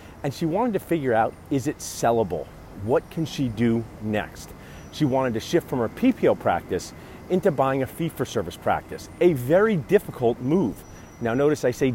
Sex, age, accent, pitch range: male, 40-59, American, 100-145 Hz